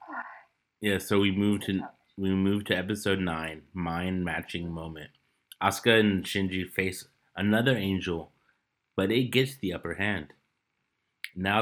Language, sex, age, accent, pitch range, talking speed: English, male, 30-49, American, 90-105 Hz, 130 wpm